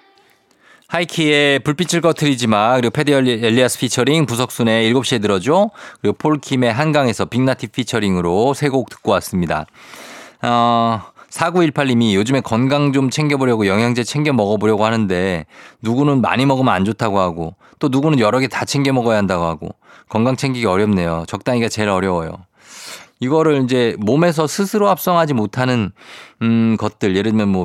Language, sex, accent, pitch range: Korean, male, native, 105-145 Hz